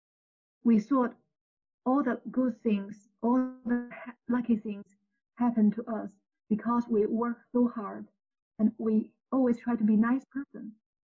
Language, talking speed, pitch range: English, 140 wpm, 210-240 Hz